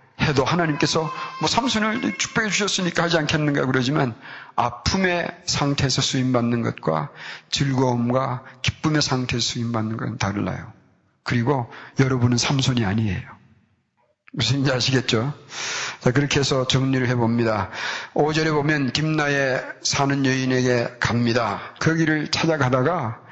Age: 40-59